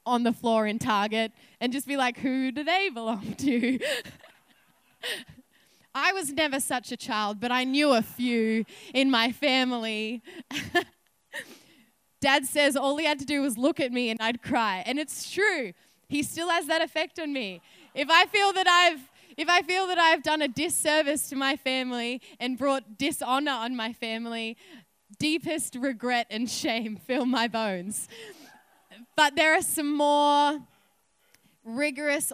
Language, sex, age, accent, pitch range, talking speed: English, female, 20-39, Australian, 225-295 Hz, 160 wpm